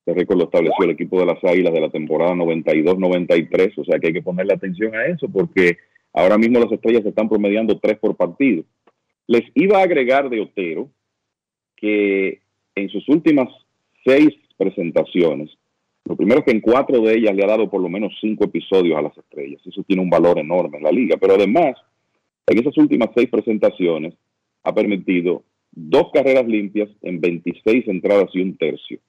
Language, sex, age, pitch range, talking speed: Spanish, male, 40-59, 90-115 Hz, 185 wpm